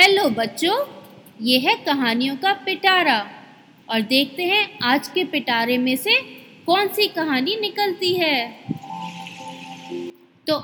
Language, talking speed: Hindi, 120 wpm